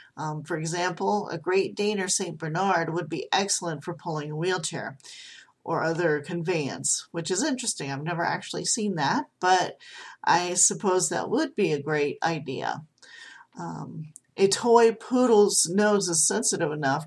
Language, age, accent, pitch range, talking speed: English, 40-59, American, 150-185 Hz, 155 wpm